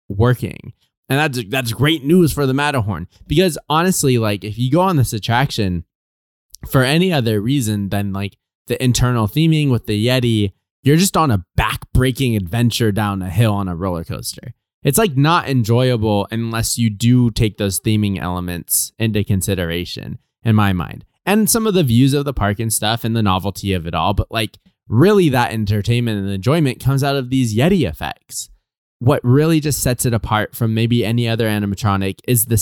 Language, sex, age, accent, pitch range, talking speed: English, male, 20-39, American, 105-140 Hz, 185 wpm